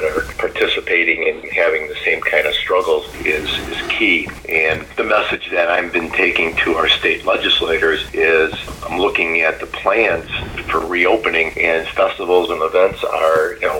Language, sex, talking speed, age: English, male, 165 wpm, 50-69